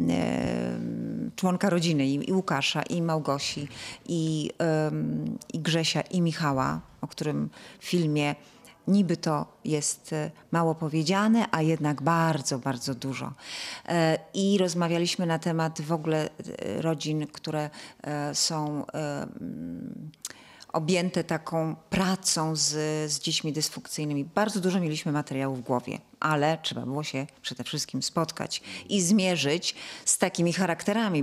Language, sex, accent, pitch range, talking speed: Polish, female, native, 150-180 Hz, 115 wpm